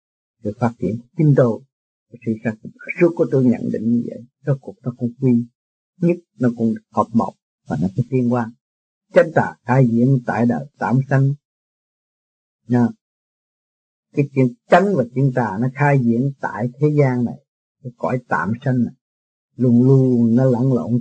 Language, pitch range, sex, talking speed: Vietnamese, 120-150 Hz, male, 170 wpm